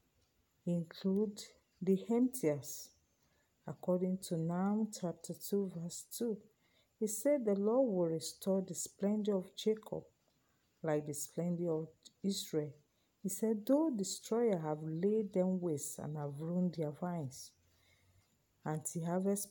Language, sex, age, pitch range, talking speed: English, female, 50-69, 155-200 Hz, 125 wpm